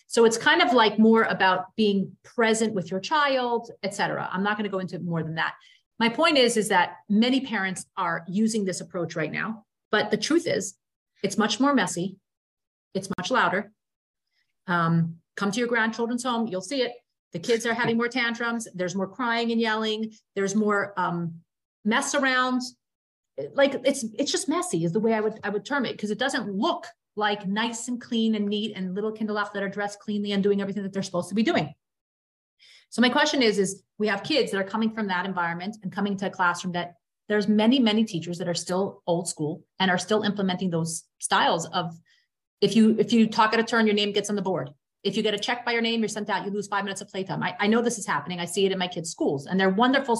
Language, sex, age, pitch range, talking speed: English, female, 30-49, 190-230 Hz, 235 wpm